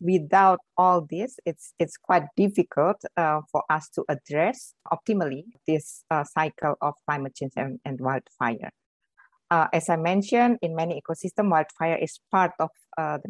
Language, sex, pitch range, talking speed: English, female, 150-180 Hz, 160 wpm